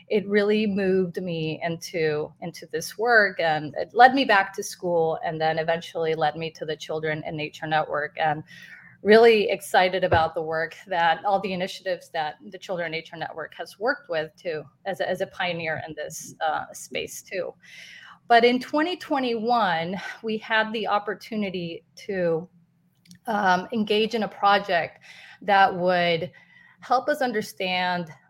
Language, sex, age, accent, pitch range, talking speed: English, female, 30-49, American, 170-215 Hz, 155 wpm